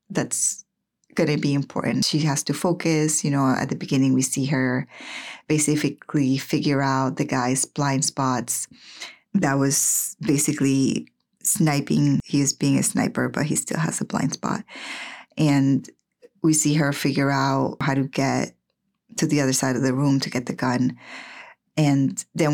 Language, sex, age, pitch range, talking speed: English, female, 20-39, 135-165 Hz, 165 wpm